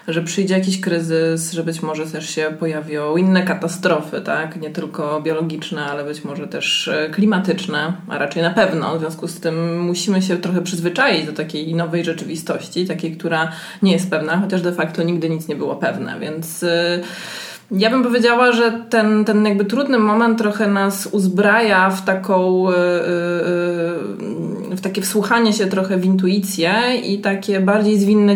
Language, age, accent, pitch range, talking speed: Polish, 20-39, native, 165-205 Hz, 160 wpm